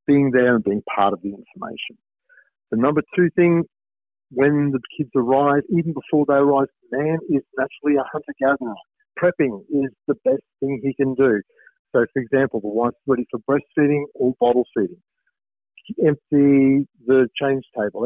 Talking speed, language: 165 wpm, English